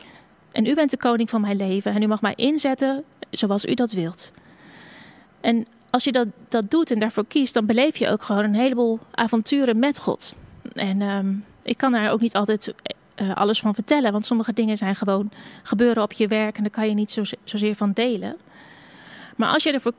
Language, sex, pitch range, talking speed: Dutch, female, 210-255 Hz, 205 wpm